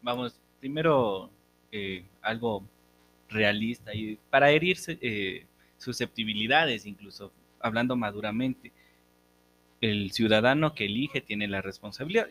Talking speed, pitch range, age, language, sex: 95 wpm, 100-135 Hz, 30-49, Spanish, male